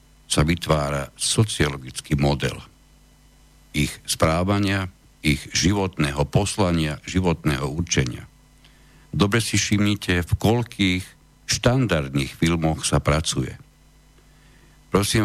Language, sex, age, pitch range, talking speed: Slovak, male, 60-79, 80-105 Hz, 85 wpm